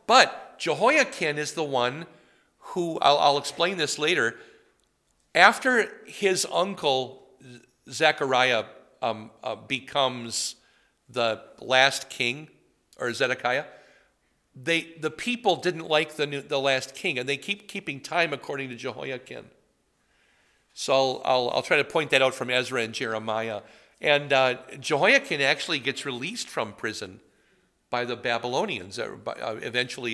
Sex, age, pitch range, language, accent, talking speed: male, 50-69, 125-160 Hz, English, American, 135 wpm